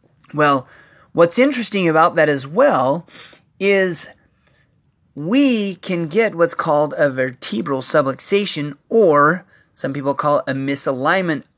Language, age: English, 30-49